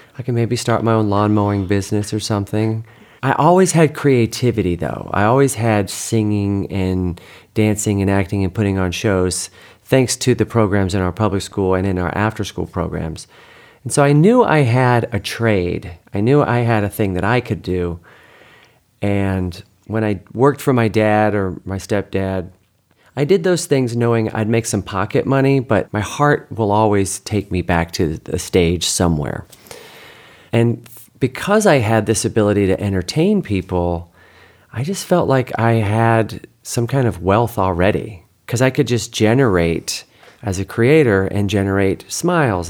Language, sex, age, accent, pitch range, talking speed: English, male, 40-59, American, 95-120 Hz, 170 wpm